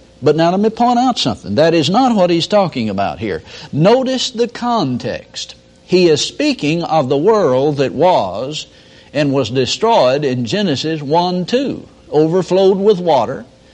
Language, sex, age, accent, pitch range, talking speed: English, male, 60-79, American, 140-220 Hz, 155 wpm